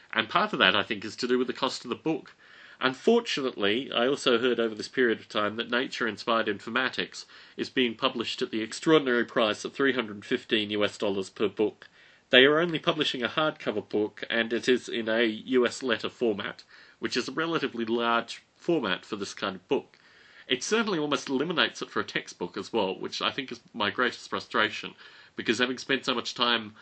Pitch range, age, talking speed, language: 105-130 Hz, 30-49, 200 wpm, English